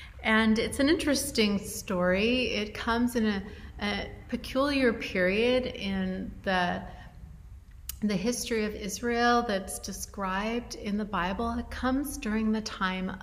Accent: American